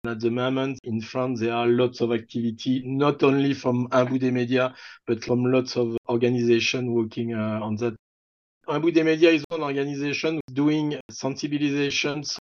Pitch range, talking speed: 125-150 Hz, 160 wpm